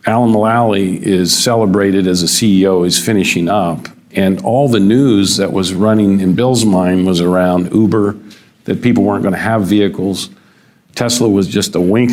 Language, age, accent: English, 50-69, American